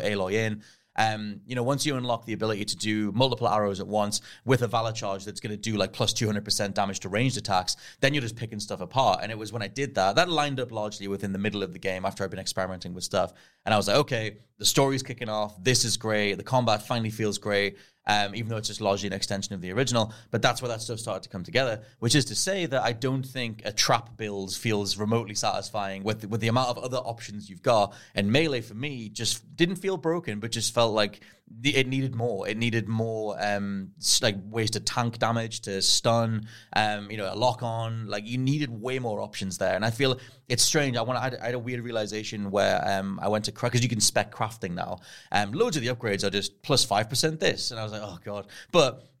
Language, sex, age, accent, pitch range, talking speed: English, male, 30-49, British, 105-120 Hz, 245 wpm